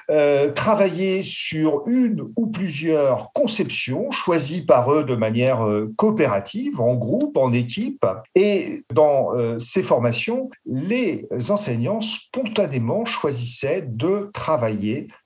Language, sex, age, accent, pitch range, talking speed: French, male, 50-69, French, 120-165 Hz, 115 wpm